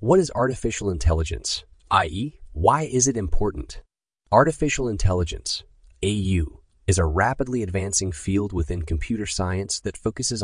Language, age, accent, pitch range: English, 30-49, American, 85-110 Hz